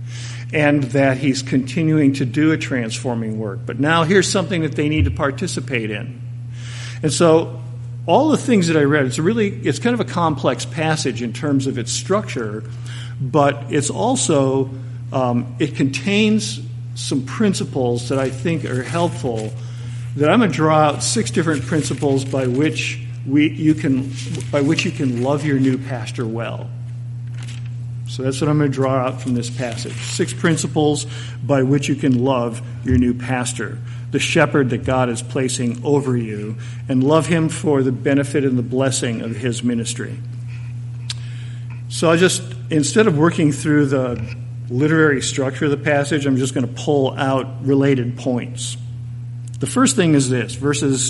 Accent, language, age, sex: American, English, 50-69, male